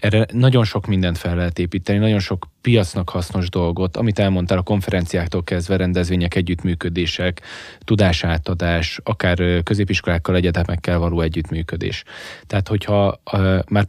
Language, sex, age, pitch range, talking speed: Hungarian, male, 10-29, 90-100 Hz, 120 wpm